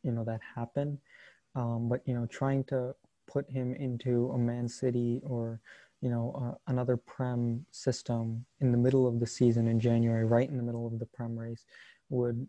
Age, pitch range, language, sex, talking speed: 20-39, 120-130 Hz, English, male, 185 wpm